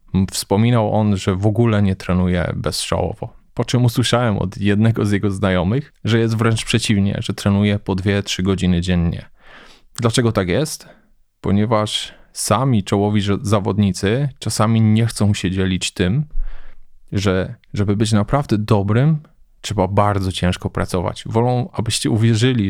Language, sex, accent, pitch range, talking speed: Polish, male, native, 100-115 Hz, 135 wpm